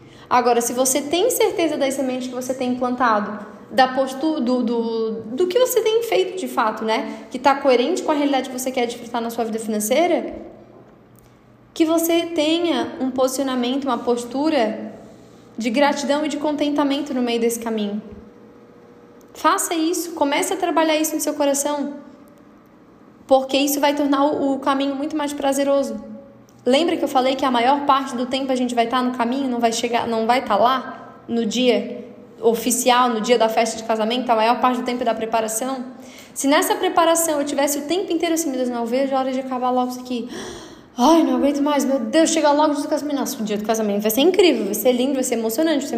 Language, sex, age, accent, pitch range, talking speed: Portuguese, female, 10-29, Brazilian, 240-290 Hz, 205 wpm